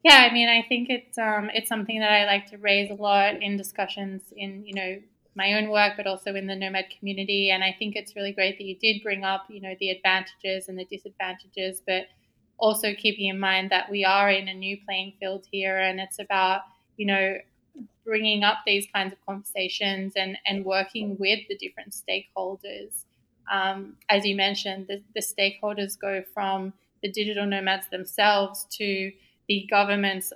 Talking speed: 190 wpm